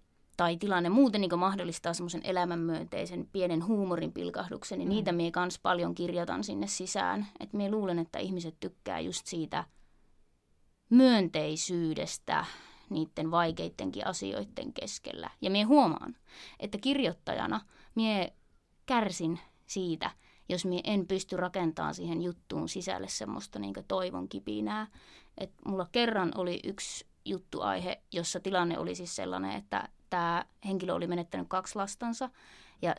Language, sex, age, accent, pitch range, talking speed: Finnish, female, 20-39, native, 170-210 Hz, 125 wpm